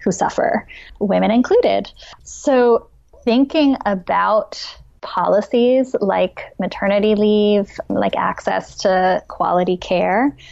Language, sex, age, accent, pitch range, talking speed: English, female, 20-39, American, 175-225 Hz, 90 wpm